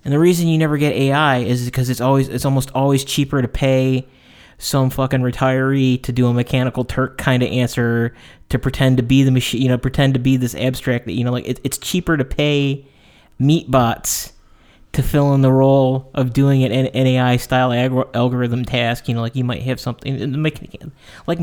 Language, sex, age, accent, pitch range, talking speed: English, male, 30-49, American, 125-145 Hz, 210 wpm